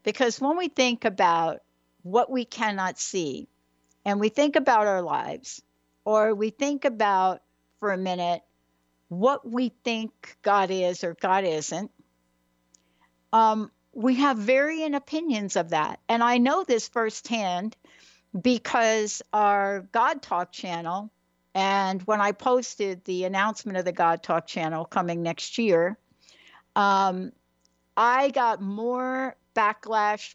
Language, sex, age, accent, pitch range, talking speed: English, female, 60-79, American, 180-230 Hz, 130 wpm